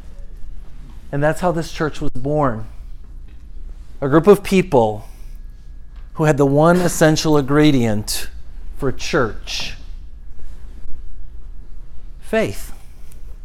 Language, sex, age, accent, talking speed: English, male, 40-59, American, 90 wpm